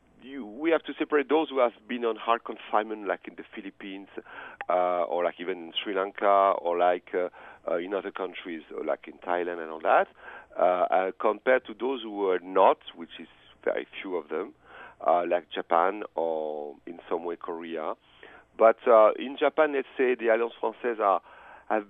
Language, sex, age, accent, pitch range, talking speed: English, male, 50-69, French, 90-125 Hz, 190 wpm